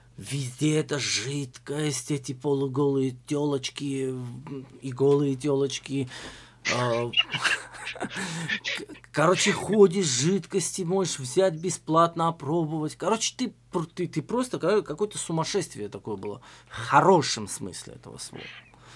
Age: 20-39